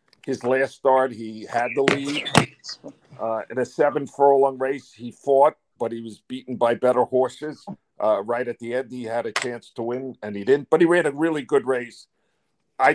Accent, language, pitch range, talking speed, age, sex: American, English, 120-145 Hz, 205 wpm, 50-69, male